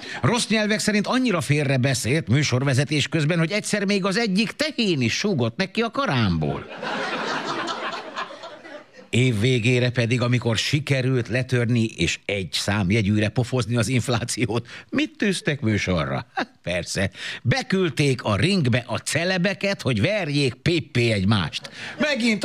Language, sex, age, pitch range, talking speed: Hungarian, male, 60-79, 110-165 Hz, 125 wpm